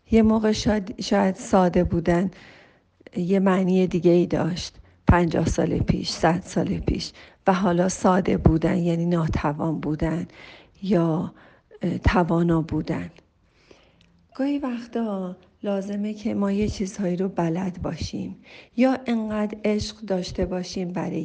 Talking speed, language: 120 wpm, Persian